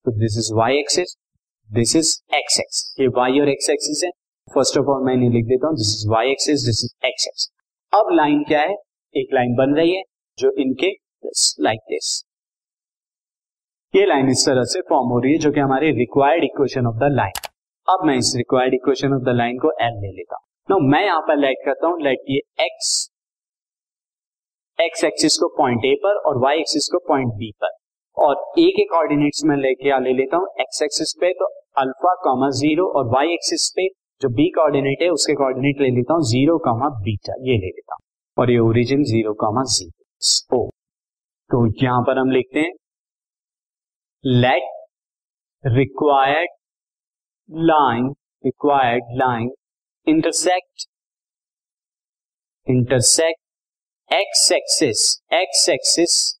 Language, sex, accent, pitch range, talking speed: Hindi, male, native, 125-165 Hz, 145 wpm